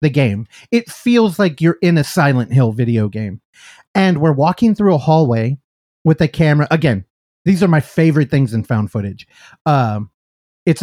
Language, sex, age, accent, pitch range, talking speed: English, male, 30-49, American, 130-175 Hz, 175 wpm